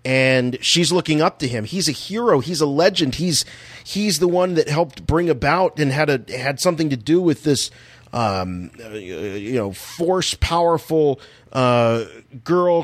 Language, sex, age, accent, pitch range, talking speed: English, male, 40-59, American, 120-165 Hz, 170 wpm